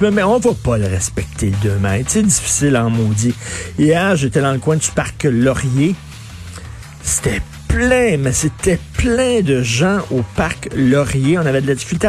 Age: 50-69